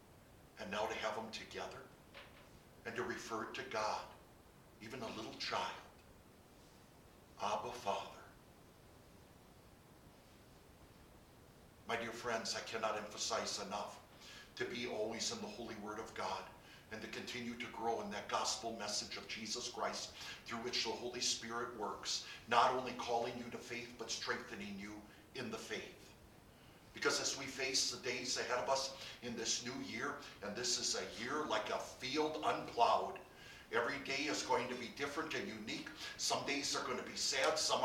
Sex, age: male, 50-69